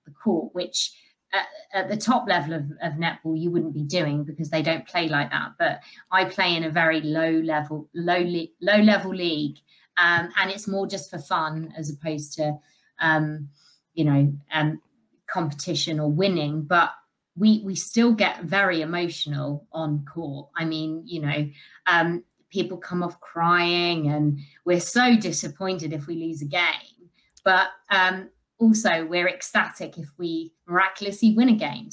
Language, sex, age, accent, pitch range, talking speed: English, female, 20-39, British, 160-200 Hz, 165 wpm